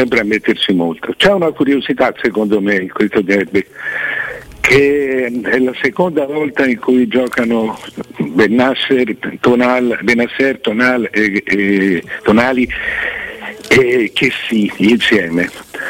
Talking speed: 115 wpm